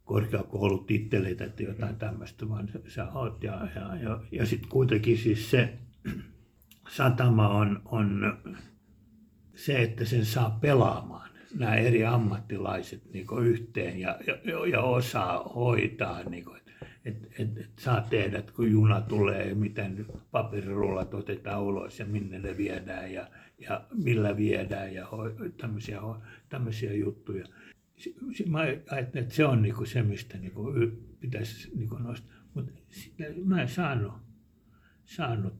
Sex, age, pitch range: male, 60-79, 105-130 Hz